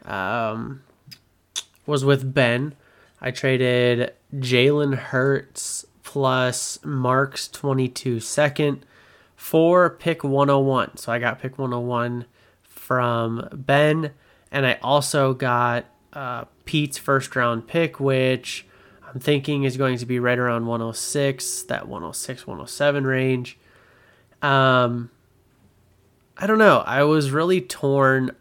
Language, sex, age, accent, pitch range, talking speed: English, male, 20-39, American, 115-140 Hz, 110 wpm